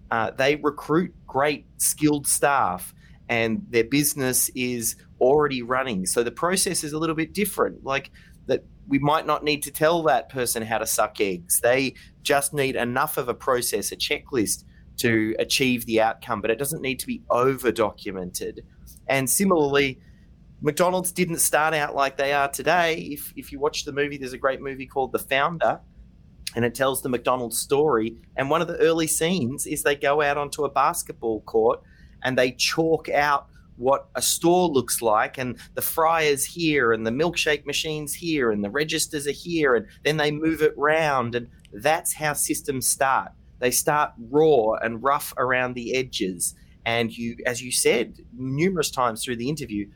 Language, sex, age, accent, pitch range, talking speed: English, male, 30-49, Australian, 120-150 Hz, 180 wpm